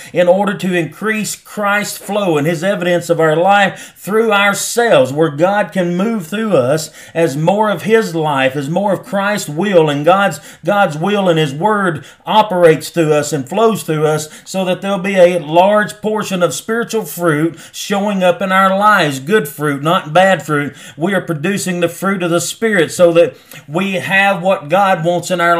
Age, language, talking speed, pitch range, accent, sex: 40-59, English, 190 wpm, 165-195 Hz, American, male